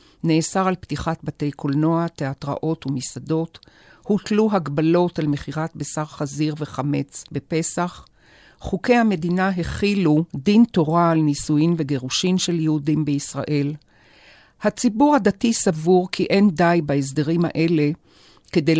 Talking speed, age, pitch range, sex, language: 110 wpm, 50-69, 145-185 Hz, female, Hebrew